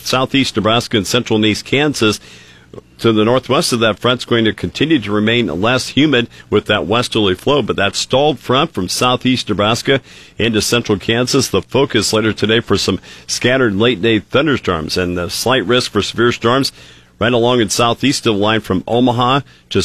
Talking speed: 185 wpm